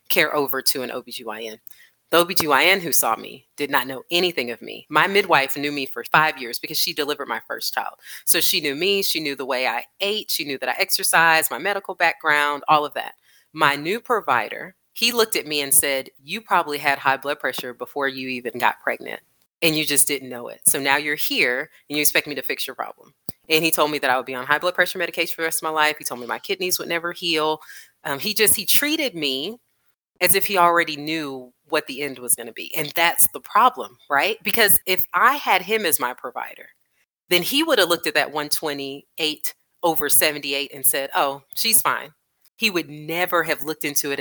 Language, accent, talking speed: English, American, 225 wpm